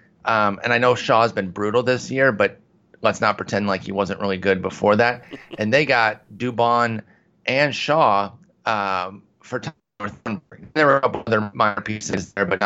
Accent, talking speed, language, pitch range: American, 170 wpm, English, 100-120 Hz